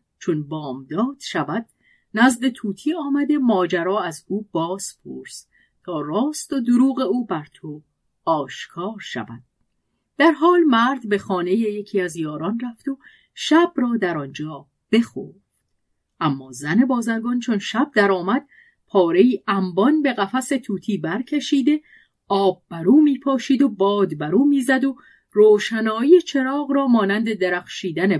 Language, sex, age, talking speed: Persian, female, 40-59, 130 wpm